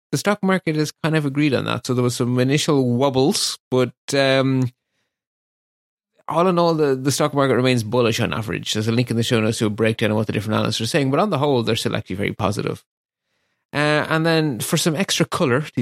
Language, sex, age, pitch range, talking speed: English, male, 30-49, 115-160 Hz, 235 wpm